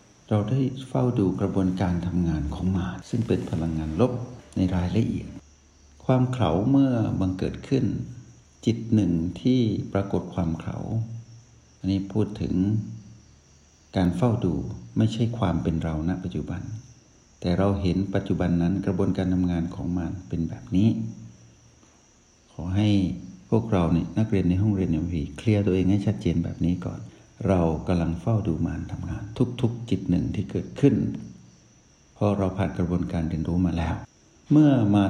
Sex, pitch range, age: male, 85-110 Hz, 60-79